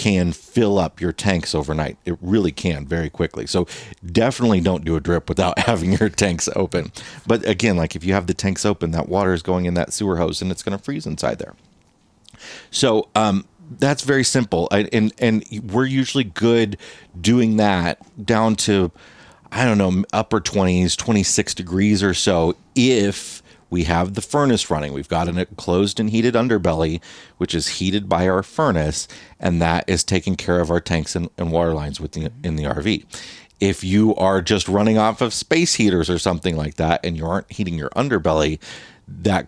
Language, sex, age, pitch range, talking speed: English, male, 40-59, 85-105 Hz, 185 wpm